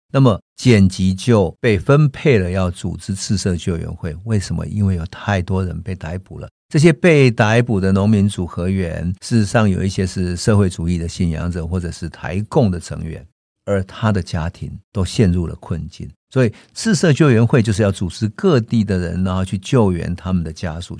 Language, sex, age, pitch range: Chinese, male, 50-69, 90-110 Hz